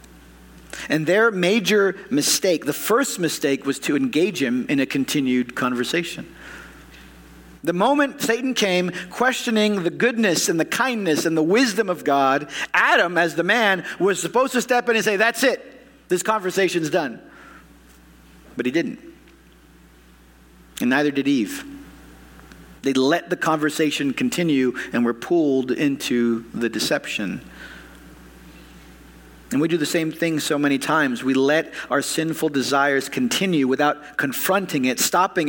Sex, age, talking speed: male, 50-69, 140 wpm